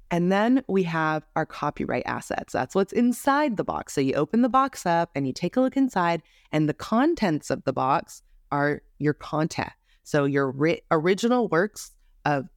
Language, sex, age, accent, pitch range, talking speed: English, female, 20-39, American, 140-195 Hz, 180 wpm